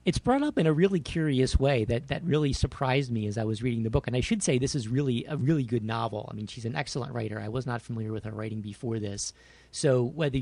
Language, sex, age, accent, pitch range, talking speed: English, male, 40-59, American, 115-145 Hz, 270 wpm